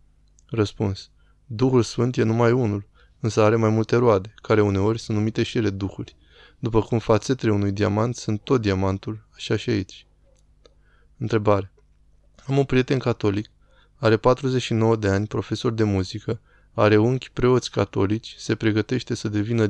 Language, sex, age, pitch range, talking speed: Romanian, male, 20-39, 105-120 Hz, 150 wpm